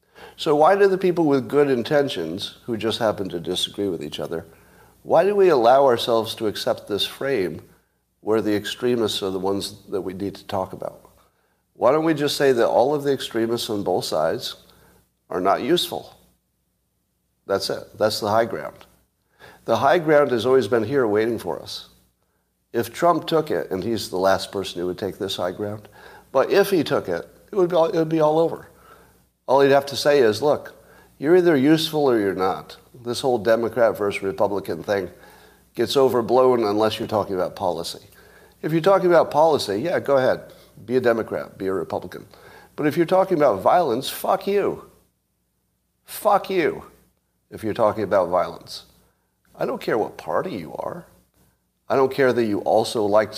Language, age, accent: English, 50-69, American